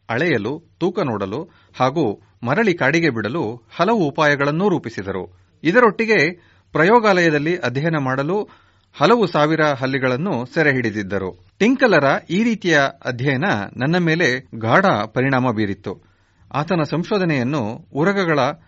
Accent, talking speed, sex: native, 100 wpm, male